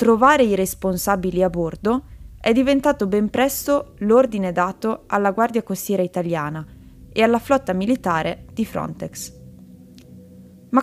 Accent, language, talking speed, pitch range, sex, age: native, Italian, 120 wpm, 175-240 Hz, female, 20-39